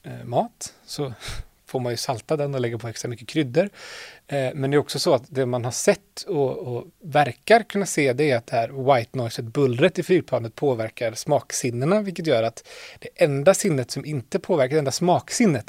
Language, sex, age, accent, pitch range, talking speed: Swedish, male, 30-49, native, 120-160 Hz, 205 wpm